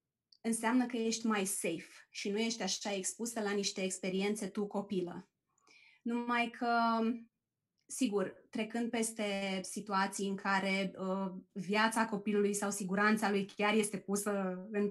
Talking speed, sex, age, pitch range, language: 130 wpm, female, 20-39, 190-230 Hz, Romanian